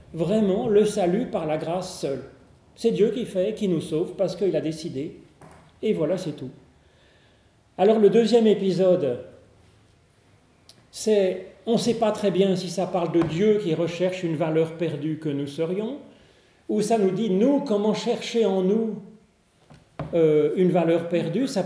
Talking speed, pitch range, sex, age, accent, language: 165 wpm, 170-215 Hz, male, 40-59, French, French